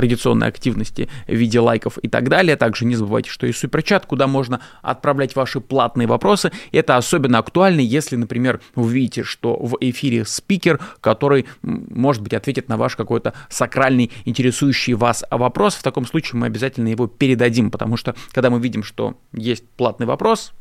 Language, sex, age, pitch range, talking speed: Russian, male, 20-39, 115-145 Hz, 170 wpm